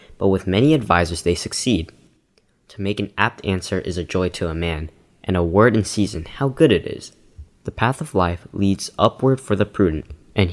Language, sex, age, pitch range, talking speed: English, male, 10-29, 90-110 Hz, 205 wpm